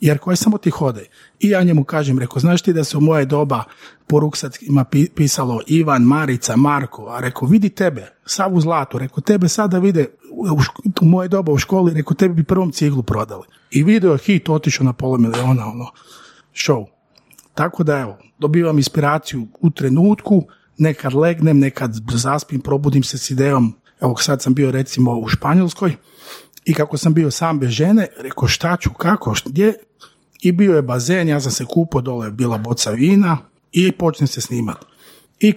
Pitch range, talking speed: 130-170 Hz, 175 wpm